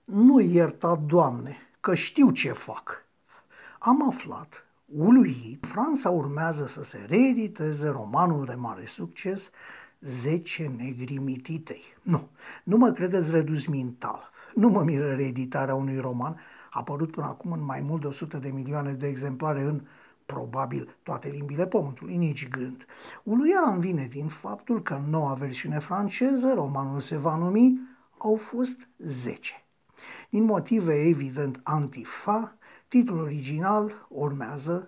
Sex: male